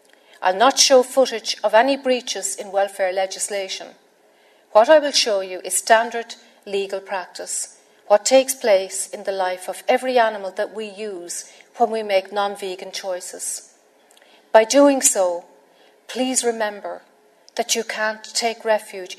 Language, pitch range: English, 190-235 Hz